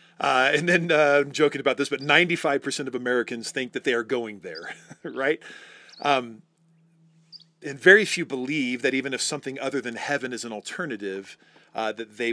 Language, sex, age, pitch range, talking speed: English, male, 40-59, 115-150 Hz, 180 wpm